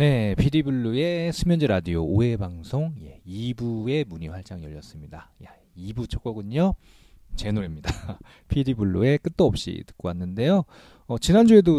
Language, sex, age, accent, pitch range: Korean, male, 40-59, native, 90-135 Hz